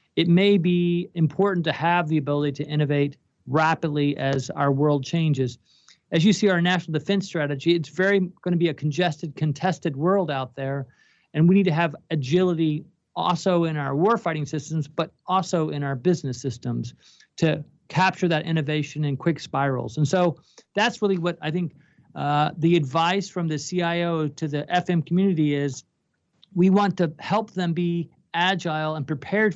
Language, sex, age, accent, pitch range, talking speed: English, male, 40-59, American, 145-175 Hz, 175 wpm